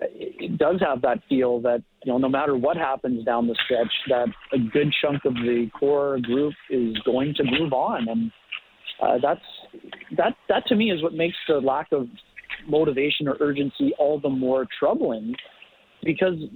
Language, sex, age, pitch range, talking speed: English, male, 40-59, 135-175 Hz, 180 wpm